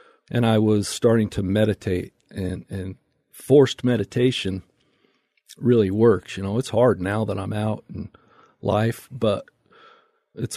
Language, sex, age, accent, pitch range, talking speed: English, male, 40-59, American, 105-120 Hz, 135 wpm